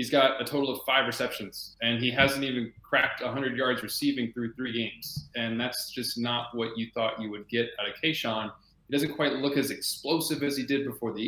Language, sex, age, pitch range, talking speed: English, male, 20-39, 115-135 Hz, 225 wpm